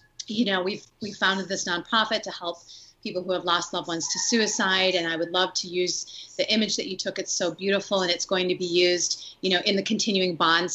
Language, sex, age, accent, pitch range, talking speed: English, female, 30-49, American, 170-195 Hz, 240 wpm